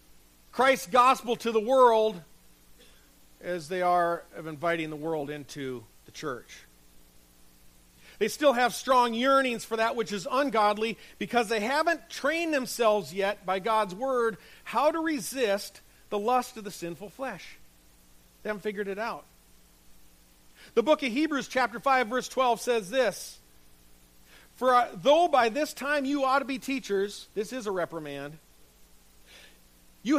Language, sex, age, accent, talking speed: English, male, 50-69, American, 145 wpm